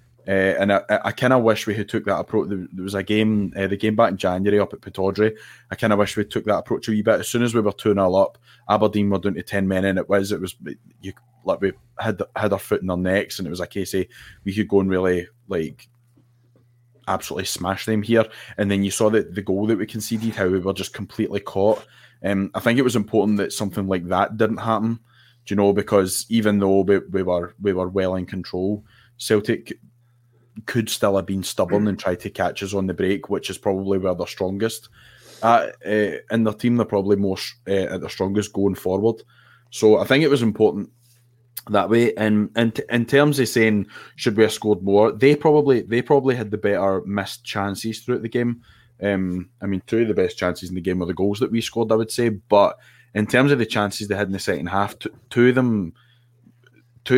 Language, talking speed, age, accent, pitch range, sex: English, 235 wpm, 20-39, British, 95-115 Hz, male